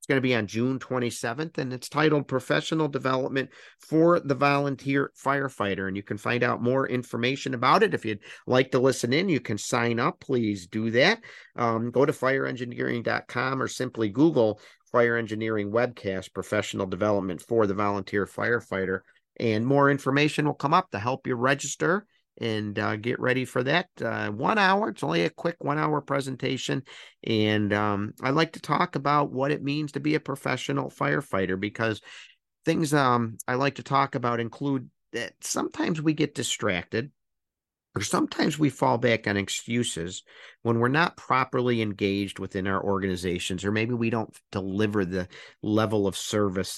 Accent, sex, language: American, male, English